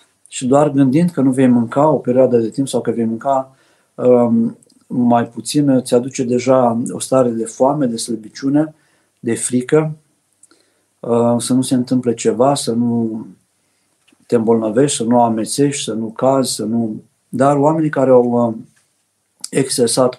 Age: 50-69